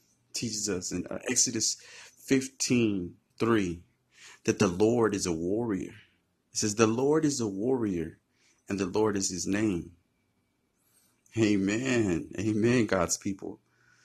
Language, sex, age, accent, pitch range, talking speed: English, male, 30-49, American, 95-120 Hz, 120 wpm